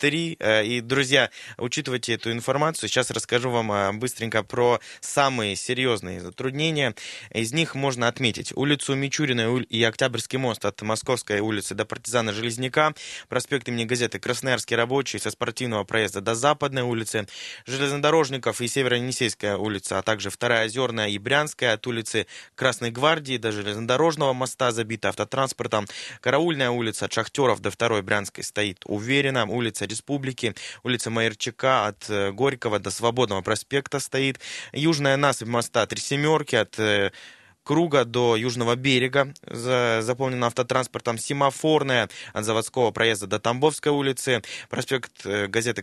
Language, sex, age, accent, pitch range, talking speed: Russian, male, 20-39, native, 110-130 Hz, 130 wpm